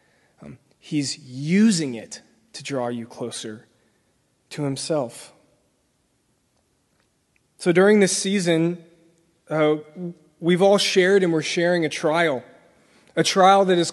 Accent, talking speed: American, 110 wpm